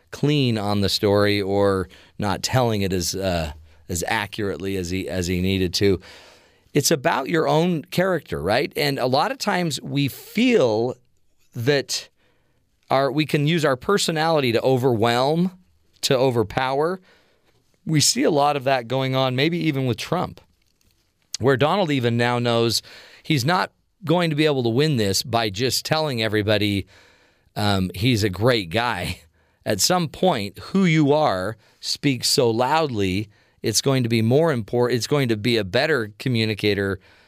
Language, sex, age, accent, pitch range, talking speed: English, male, 40-59, American, 100-140 Hz, 160 wpm